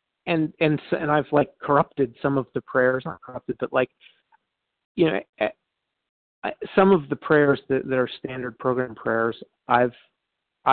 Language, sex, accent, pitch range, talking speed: English, male, American, 120-145 Hz, 150 wpm